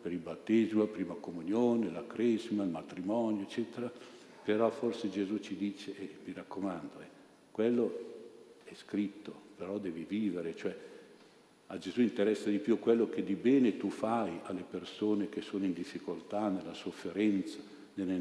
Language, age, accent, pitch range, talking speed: Italian, 50-69, native, 95-110 Hz, 155 wpm